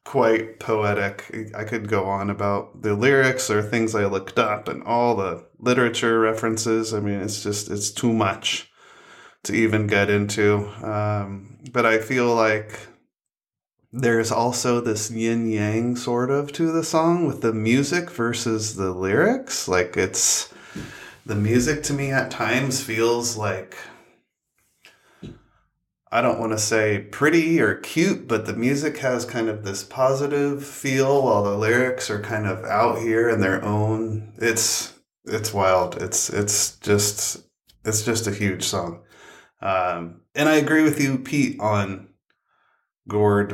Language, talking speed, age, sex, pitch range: English, 150 wpm, 20-39, male, 100-120 Hz